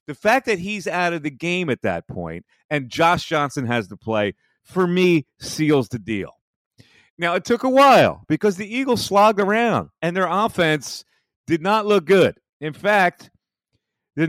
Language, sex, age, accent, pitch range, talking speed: English, male, 40-59, American, 145-205 Hz, 175 wpm